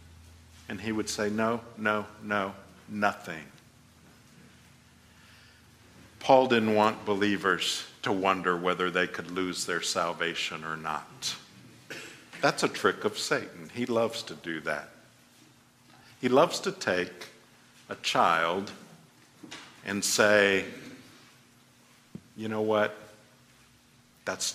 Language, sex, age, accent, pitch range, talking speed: English, male, 50-69, American, 90-115 Hz, 110 wpm